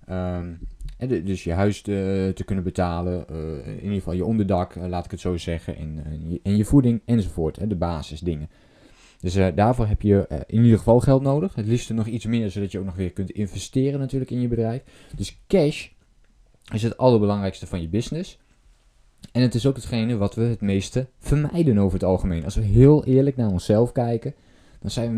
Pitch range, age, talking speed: 95-120 Hz, 20-39, 200 wpm